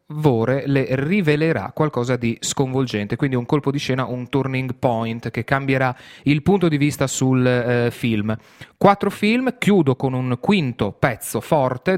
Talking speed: 150 wpm